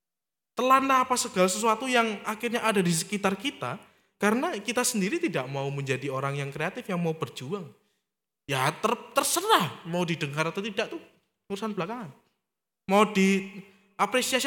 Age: 20-39